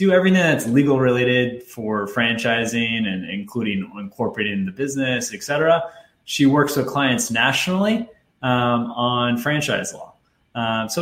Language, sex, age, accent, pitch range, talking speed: English, male, 20-39, American, 110-145 Hz, 130 wpm